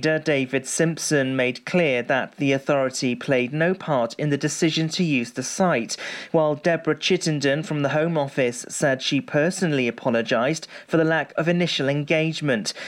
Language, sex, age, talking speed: English, male, 40-59, 160 wpm